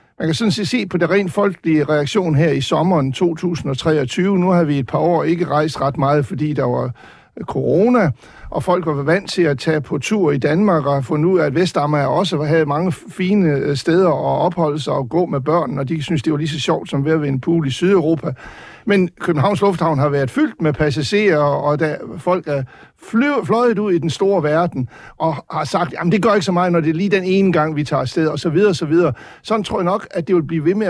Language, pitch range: Danish, 150-185 Hz